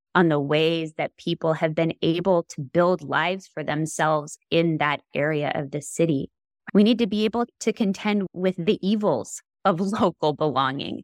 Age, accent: 20-39, American